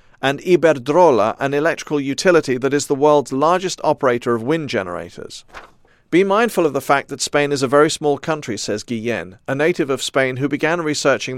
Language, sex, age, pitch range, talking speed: English, male, 40-59, 125-150 Hz, 185 wpm